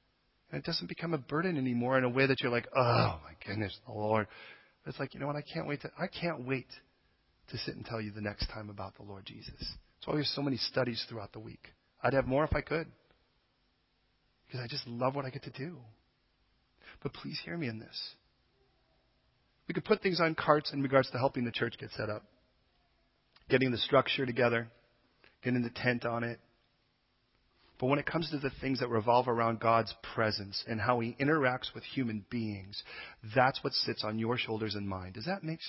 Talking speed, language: 210 wpm, English